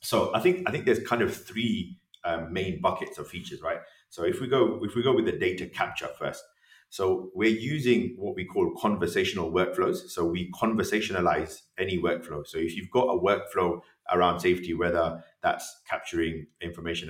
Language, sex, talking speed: English, male, 185 wpm